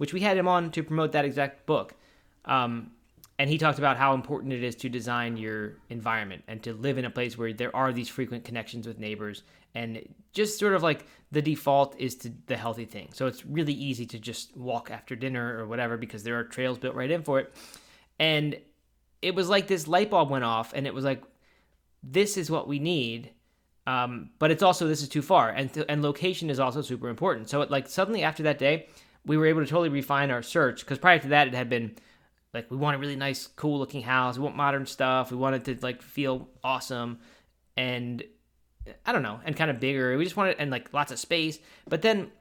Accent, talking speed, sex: American, 230 wpm, male